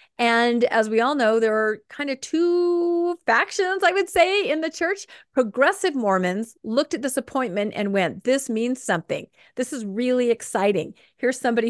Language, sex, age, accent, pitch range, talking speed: English, female, 40-59, American, 225-310 Hz, 175 wpm